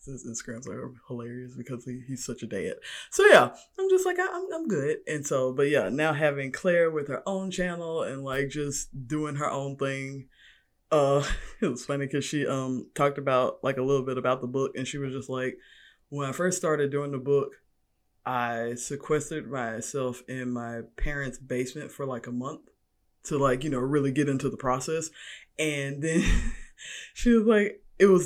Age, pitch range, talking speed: 20-39, 130-165 Hz, 200 wpm